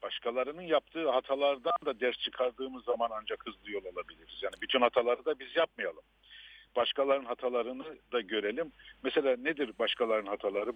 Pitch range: 110-155 Hz